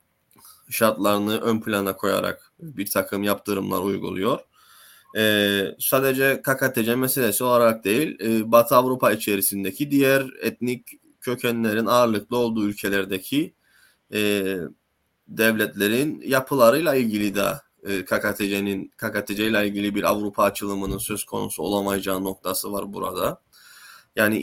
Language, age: Turkish, 20-39